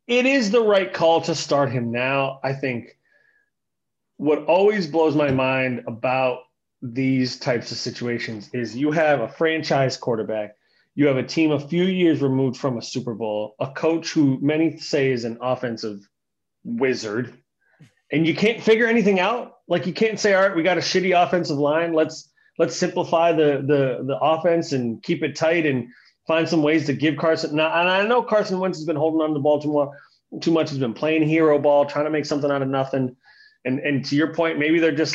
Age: 30-49